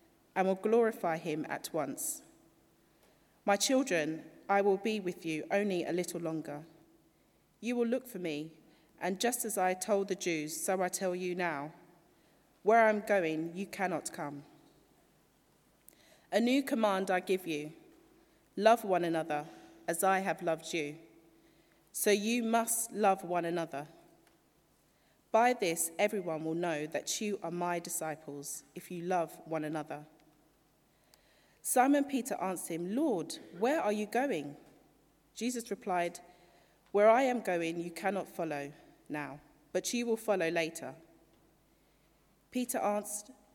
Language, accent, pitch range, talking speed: English, British, 165-220 Hz, 140 wpm